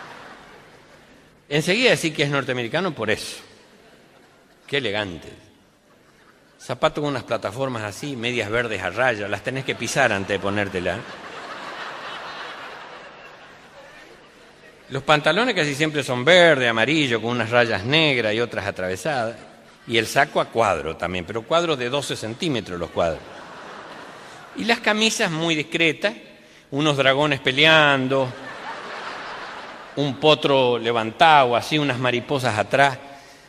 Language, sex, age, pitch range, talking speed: Spanish, male, 50-69, 120-150 Hz, 120 wpm